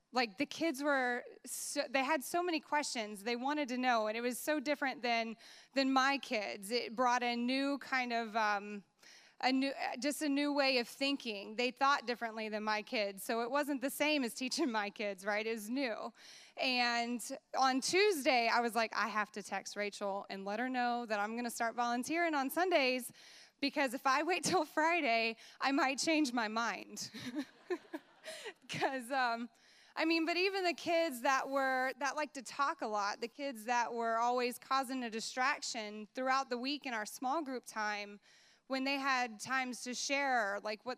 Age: 20-39